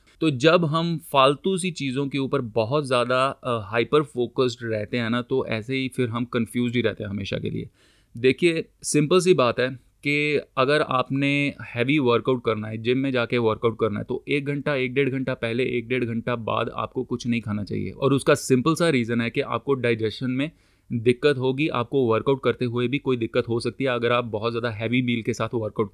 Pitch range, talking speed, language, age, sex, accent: 115-135 Hz, 215 wpm, Hindi, 30-49, male, native